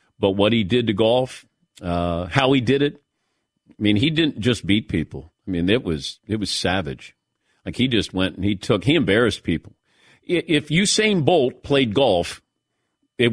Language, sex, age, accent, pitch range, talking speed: English, male, 50-69, American, 100-130 Hz, 185 wpm